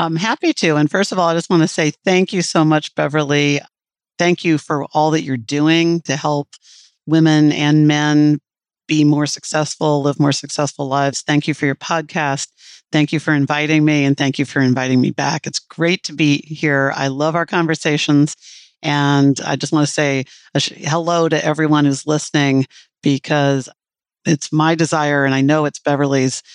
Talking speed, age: 185 wpm, 40-59